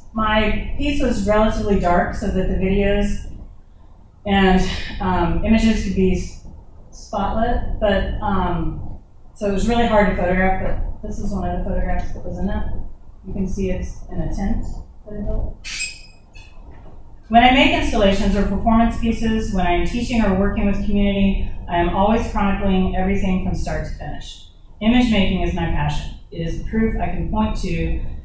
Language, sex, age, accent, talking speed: English, female, 30-49, American, 170 wpm